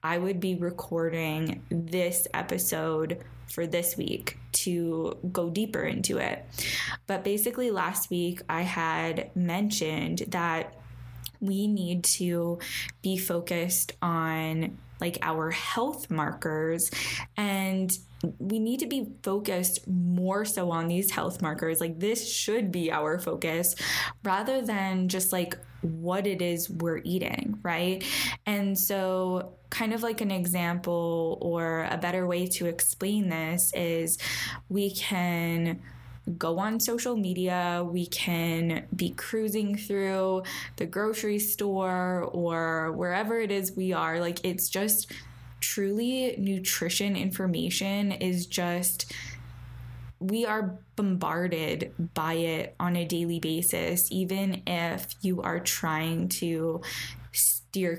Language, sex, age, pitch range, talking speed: English, female, 10-29, 165-195 Hz, 125 wpm